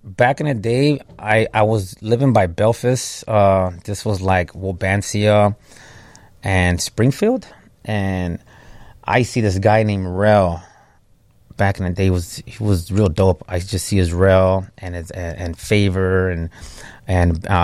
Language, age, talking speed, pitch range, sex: English, 30-49, 155 wpm, 95-115 Hz, male